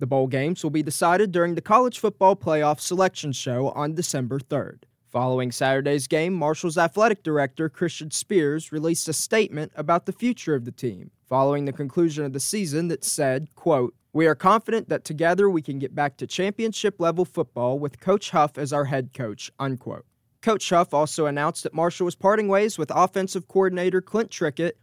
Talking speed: 185 wpm